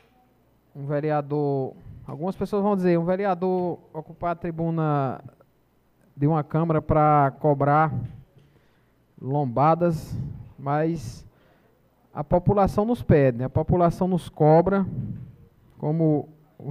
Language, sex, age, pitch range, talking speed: Portuguese, male, 20-39, 145-185 Hz, 105 wpm